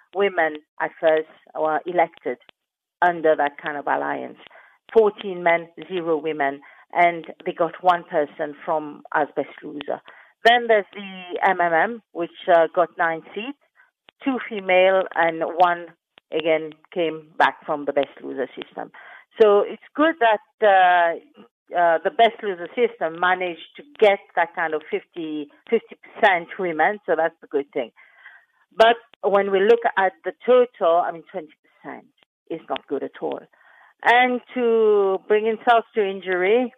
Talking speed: 145 wpm